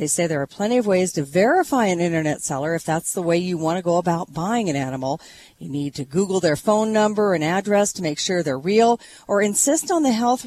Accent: American